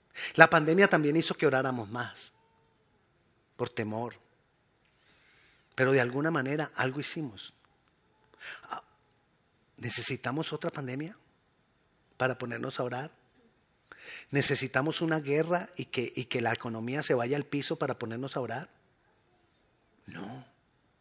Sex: male